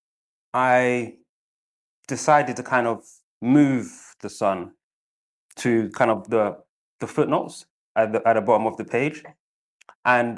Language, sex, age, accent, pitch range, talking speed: English, male, 20-39, British, 110-130 Hz, 135 wpm